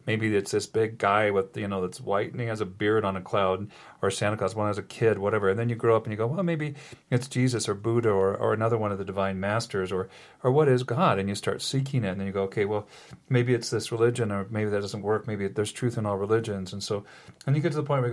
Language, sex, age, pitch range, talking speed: English, male, 40-59, 100-120 Hz, 295 wpm